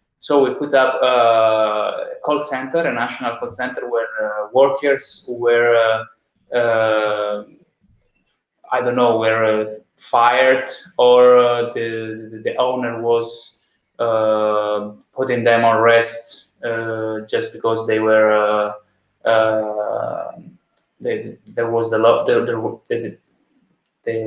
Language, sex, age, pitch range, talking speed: Dutch, male, 20-39, 110-135 Hz, 110 wpm